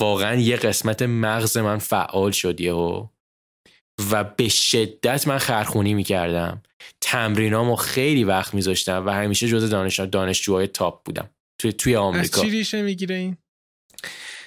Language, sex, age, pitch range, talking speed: Persian, male, 20-39, 95-120 Hz, 120 wpm